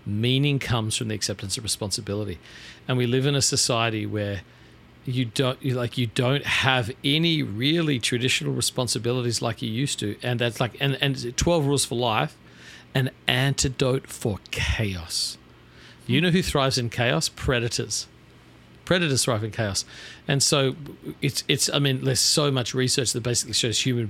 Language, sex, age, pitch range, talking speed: English, male, 50-69, 105-135 Hz, 165 wpm